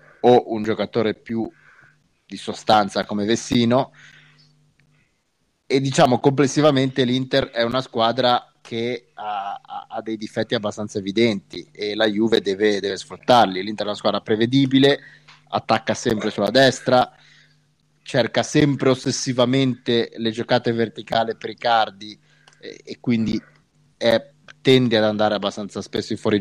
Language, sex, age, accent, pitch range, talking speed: Italian, male, 30-49, native, 105-130 Hz, 130 wpm